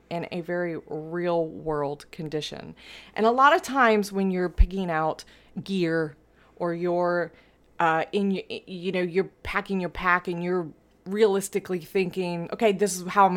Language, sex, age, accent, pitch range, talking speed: English, female, 30-49, American, 160-200 Hz, 155 wpm